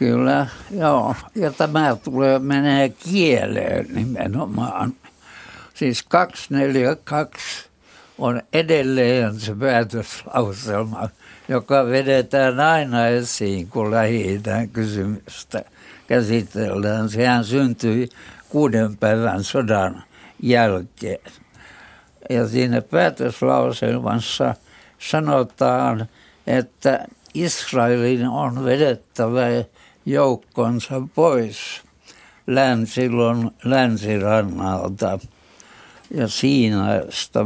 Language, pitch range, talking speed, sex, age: Finnish, 110-135 Hz, 70 wpm, male, 60-79